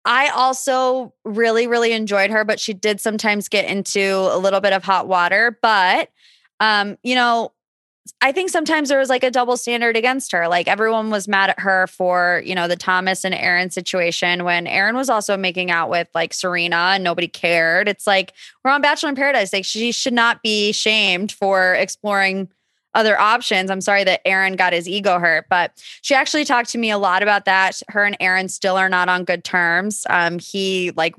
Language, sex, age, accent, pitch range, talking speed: English, female, 20-39, American, 180-230 Hz, 205 wpm